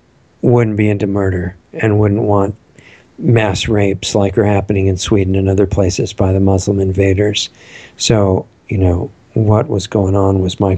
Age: 50-69